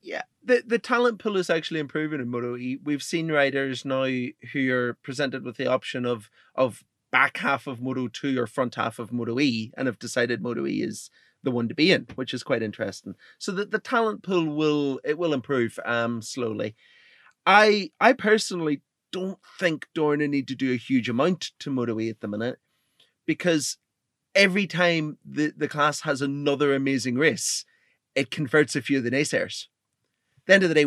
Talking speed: 195 wpm